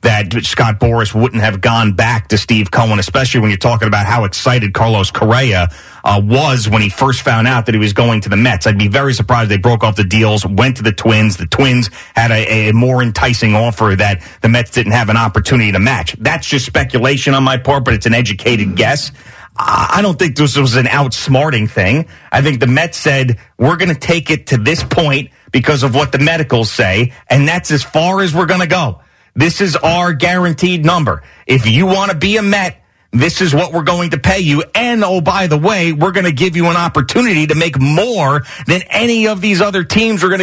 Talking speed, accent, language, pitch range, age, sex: 225 wpm, American, English, 115-170 Hz, 30-49, male